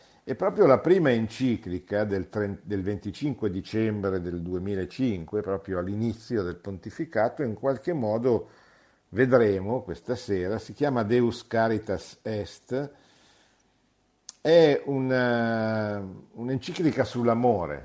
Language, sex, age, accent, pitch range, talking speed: Italian, male, 50-69, native, 95-115 Hz, 95 wpm